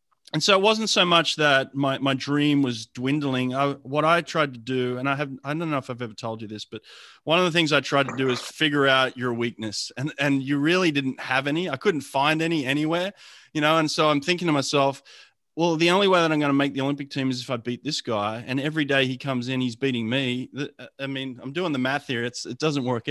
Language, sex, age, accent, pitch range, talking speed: English, male, 30-49, Australian, 125-150 Hz, 265 wpm